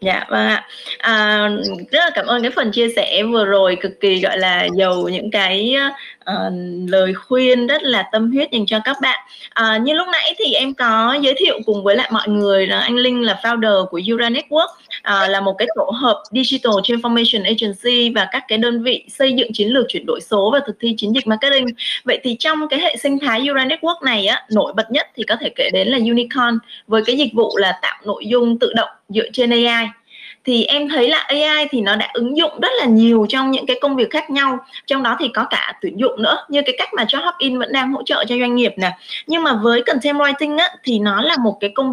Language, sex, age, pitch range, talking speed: Vietnamese, female, 20-39, 215-280 Hz, 240 wpm